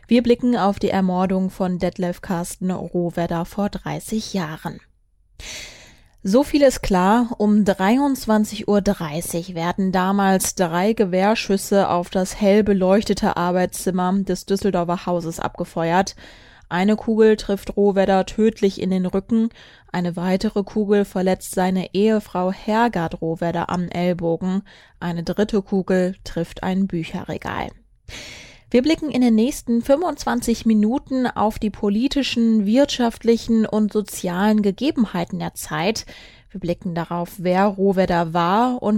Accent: German